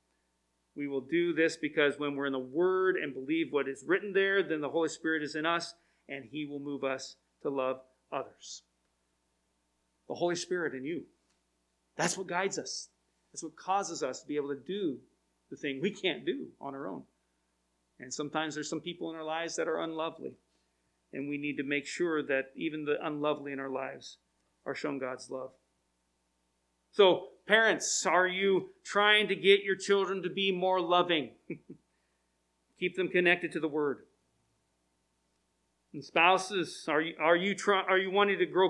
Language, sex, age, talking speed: English, male, 40-59, 175 wpm